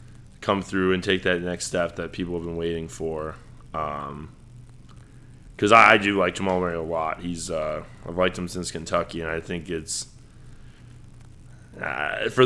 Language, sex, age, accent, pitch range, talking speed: English, male, 20-39, American, 85-120 Hz, 160 wpm